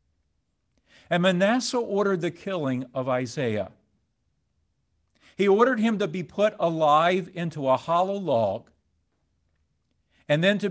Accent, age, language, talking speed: American, 50-69, English, 120 wpm